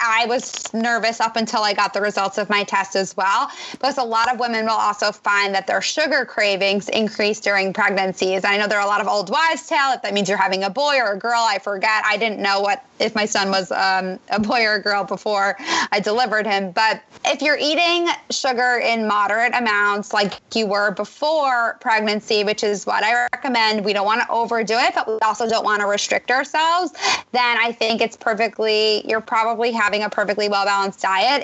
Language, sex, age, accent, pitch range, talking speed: English, female, 20-39, American, 205-245 Hz, 210 wpm